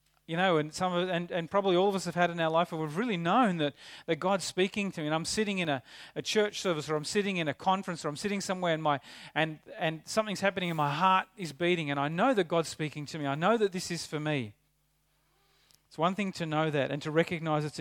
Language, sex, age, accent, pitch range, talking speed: English, male, 40-59, Australian, 145-185 Hz, 270 wpm